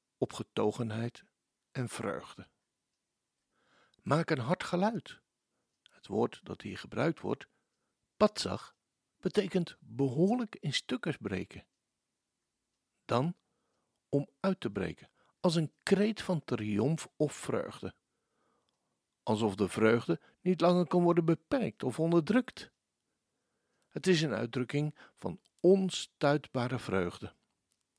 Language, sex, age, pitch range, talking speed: Dutch, male, 60-79, 115-180 Hz, 105 wpm